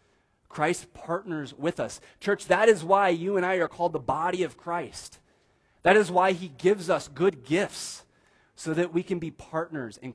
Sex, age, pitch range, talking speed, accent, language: male, 30-49, 115-165 Hz, 190 wpm, American, English